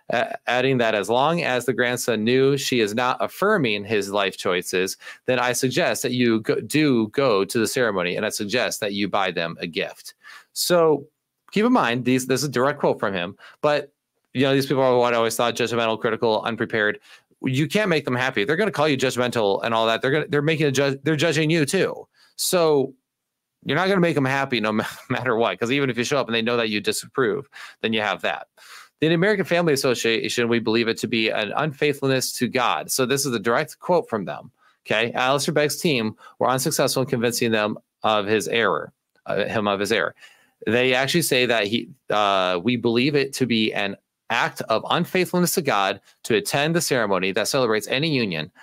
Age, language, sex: 30-49, English, male